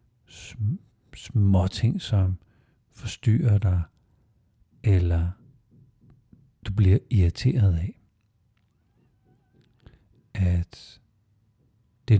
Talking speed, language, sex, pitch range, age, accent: 60 wpm, Danish, male, 95-120 Hz, 60-79, native